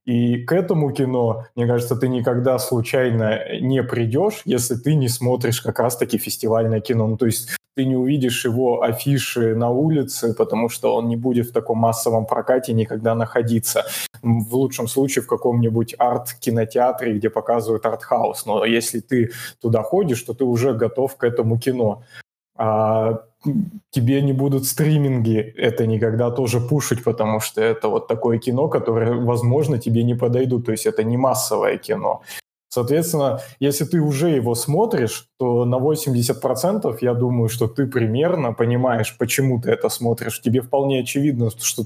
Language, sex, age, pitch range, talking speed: Russian, male, 20-39, 115-130 Hz, 160 wpm